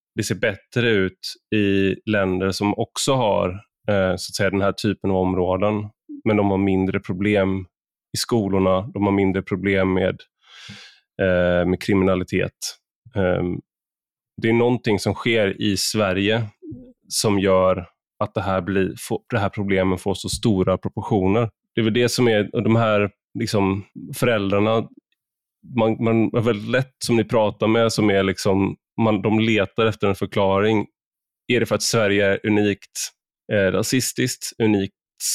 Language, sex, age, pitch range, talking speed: Swedish, male, 20-39, 95-110 Hz, 145 wpm